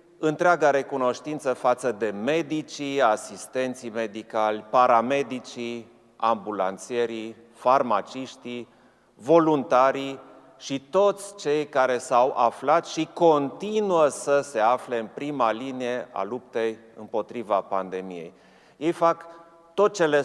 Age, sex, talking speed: 30-49, male, 100 wpm